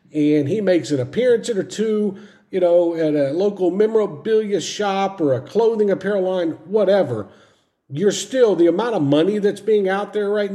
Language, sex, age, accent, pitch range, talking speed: English, male, 50-69, American, 140-185 Hz, 175 wpm